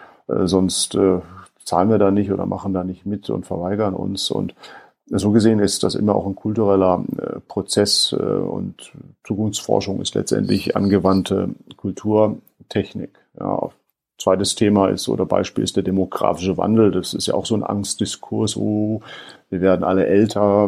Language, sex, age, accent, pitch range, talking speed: German, male, 50-69, German, 95-105 Hz, 155 wpm